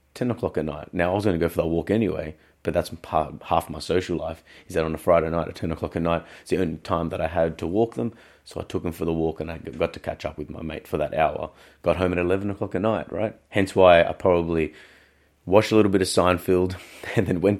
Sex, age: male, 30-49